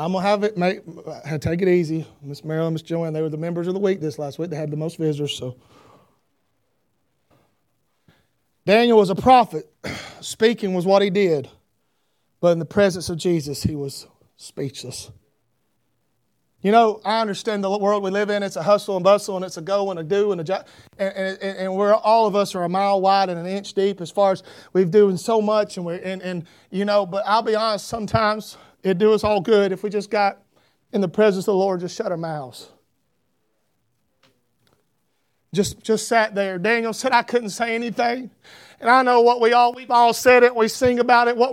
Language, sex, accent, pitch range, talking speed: English, male, American, 190-240 Hz, 215 wpm